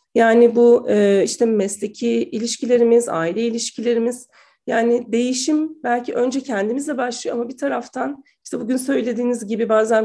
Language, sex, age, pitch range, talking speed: Turkish, female, 40-59, 210-285 Hz, 125 wpm